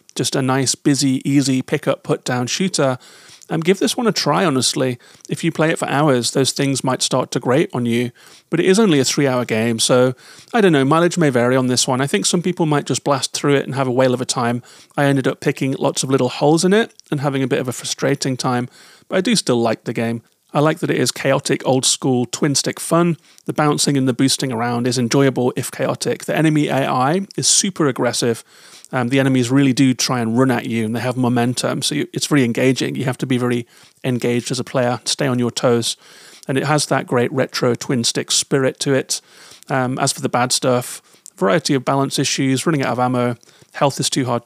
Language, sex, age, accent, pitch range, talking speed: English, male, 30-49, British, 125-150 Hz, 230 wpm